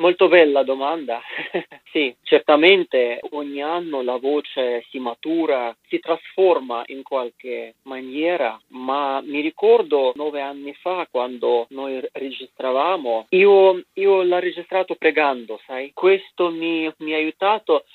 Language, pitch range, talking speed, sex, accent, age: Italian, 130-195 Hz, 115 wpm, male, native, 40-59